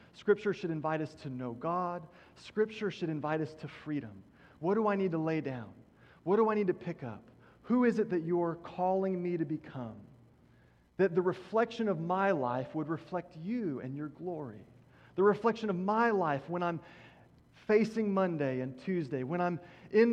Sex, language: male, English